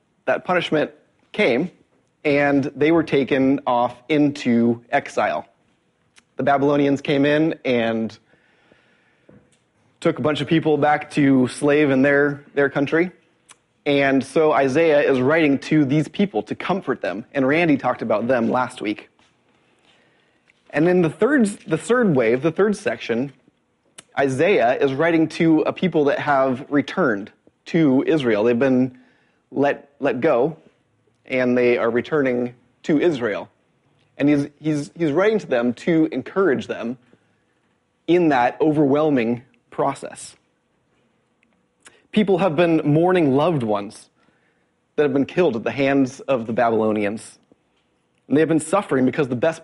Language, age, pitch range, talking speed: English, 30-49, 125-155 Hz, 140 wpm